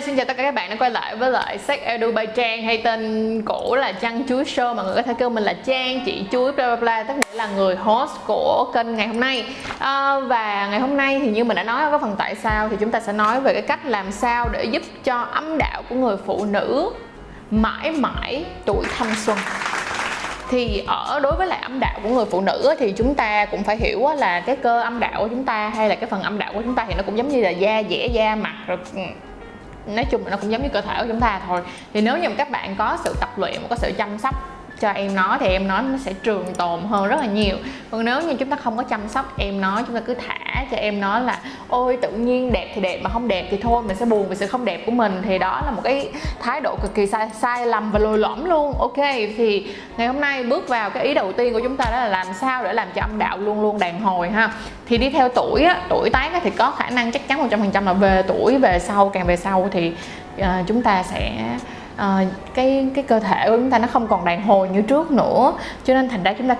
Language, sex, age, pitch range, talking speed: Vietnamese, female, 20-39, 200-255 Hz, 270 wpm